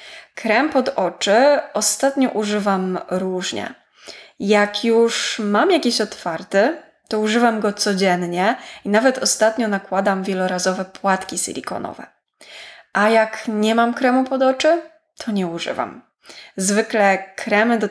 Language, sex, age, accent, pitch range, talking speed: Polish, female, 20-39, native, 195-245 Hz, 115 wpm